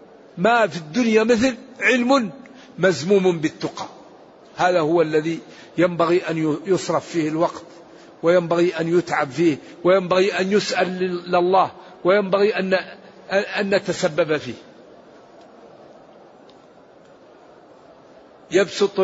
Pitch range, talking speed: 180-220 Hz, 90 wpm